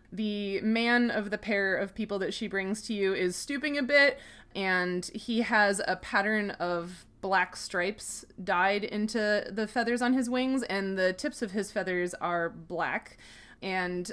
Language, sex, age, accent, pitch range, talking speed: English, female, 20-39, American, 180-215 Hz, 170 wpm